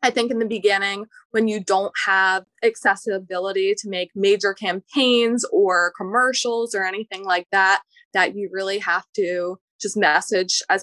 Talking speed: 155 wpm